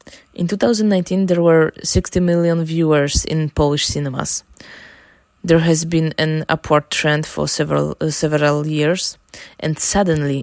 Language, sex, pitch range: English, female, 145-165 Hz